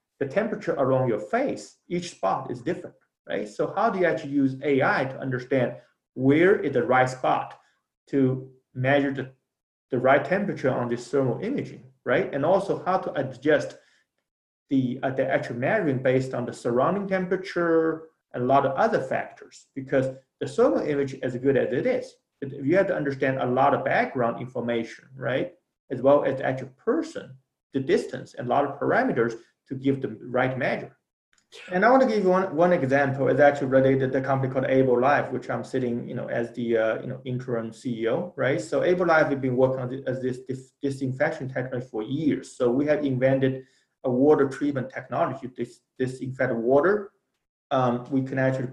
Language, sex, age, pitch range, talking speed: English, male, 30-49, 125-140 Hz, 190 wpm